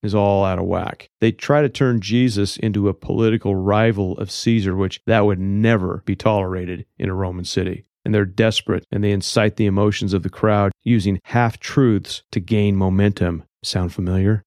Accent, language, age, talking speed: American, English, 40-59, 185 wpm